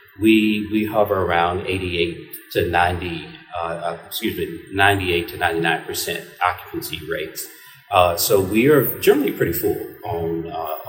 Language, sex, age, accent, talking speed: English, male, 40-59, American, 130 wpm